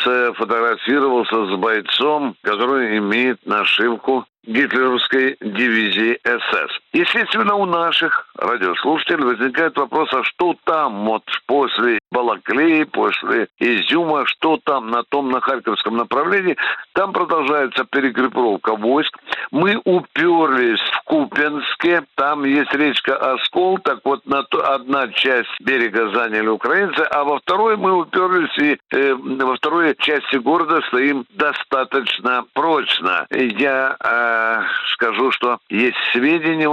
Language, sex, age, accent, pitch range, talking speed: Russian, male, 60-79, native, 120-150 Hz, 115 wpm